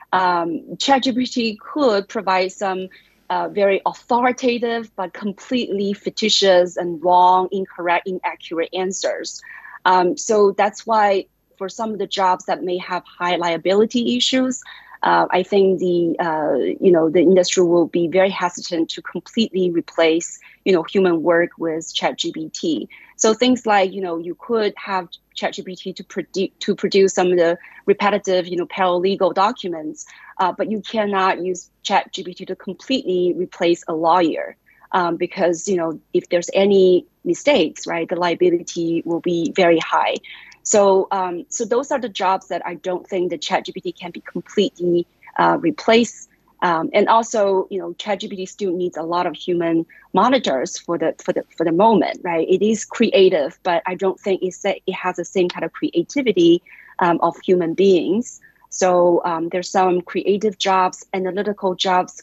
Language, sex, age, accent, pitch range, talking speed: English, female, 30-49, Chinese, 175-210 Hz, 160 wpm